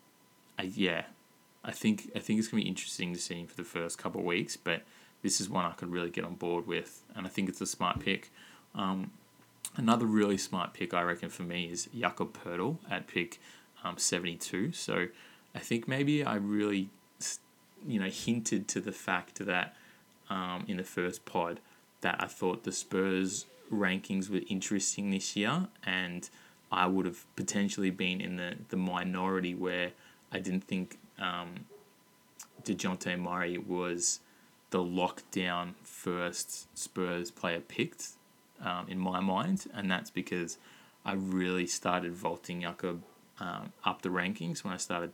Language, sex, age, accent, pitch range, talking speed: English, male, 20-39, Australian, 90-100 Hz, 165 wpm